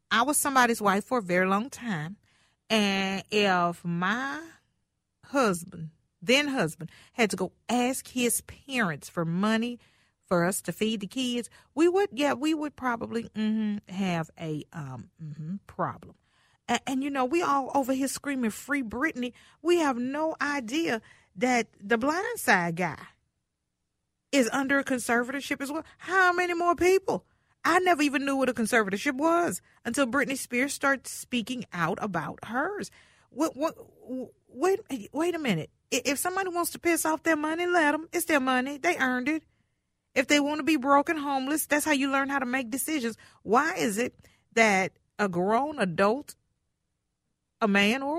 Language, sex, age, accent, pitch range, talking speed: English, female, 40-59, American, 205-290 Hz, 170 wpm